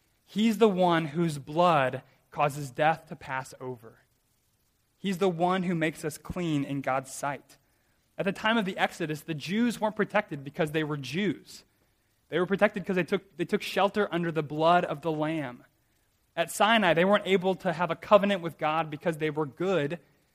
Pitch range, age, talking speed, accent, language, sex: 145-185 Hz, 20-39, 190 wpm, American, English, male